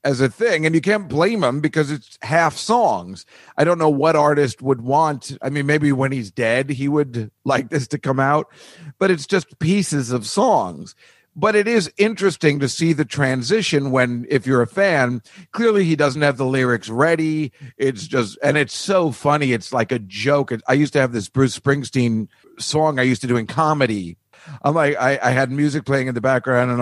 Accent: American